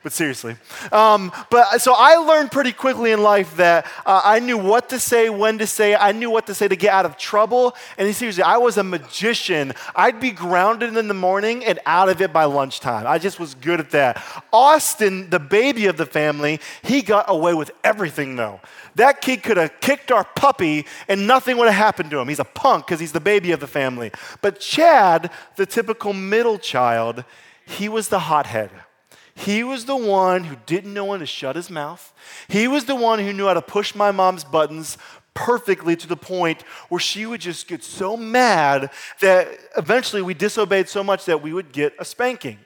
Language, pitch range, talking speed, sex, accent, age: English, 170-225 Hz, 210 wpm, male, American, 30-49